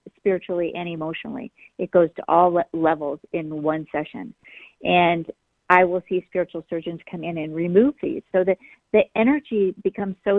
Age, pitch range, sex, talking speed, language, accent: 50-69, 180-215 Hz, female, 160 wpm, English, American